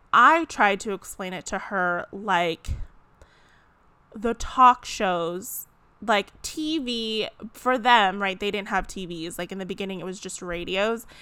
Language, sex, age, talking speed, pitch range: English, female, 20-39, 150 wpm, 180-225 Hz